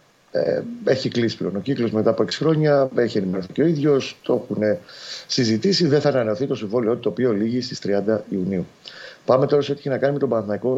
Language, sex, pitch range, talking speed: Greek, male, 110-140 Hz, 215 wpm